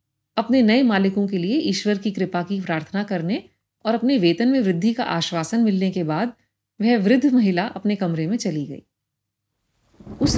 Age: 30-49